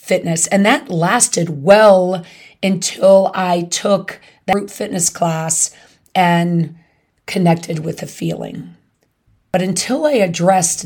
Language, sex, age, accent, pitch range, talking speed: English, female, 30-49, American, 145-190 Hz, 115 wpm